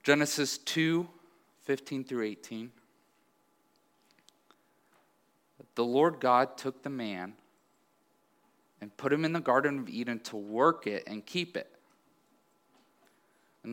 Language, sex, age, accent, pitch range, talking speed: English, male, 30-49, American, 105-145 Hz, 115 wpm